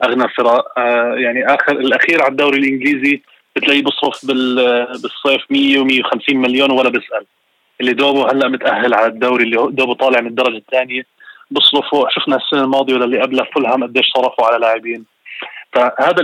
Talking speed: 160 wpm